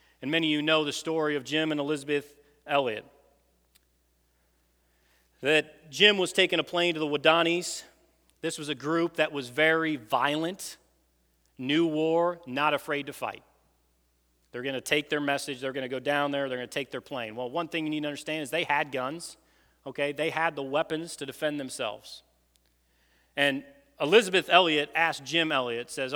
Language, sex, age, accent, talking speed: English, male, 40-59, American, 180 wpm